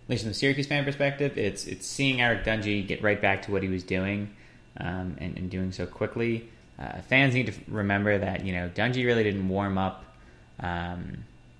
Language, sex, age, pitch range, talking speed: English, male, 20-39, 95-115 Hz, 210 wpm